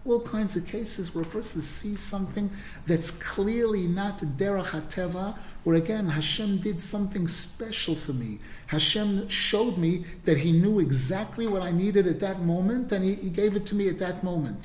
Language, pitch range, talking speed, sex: English, 160-205 Hz, 180 wpm, male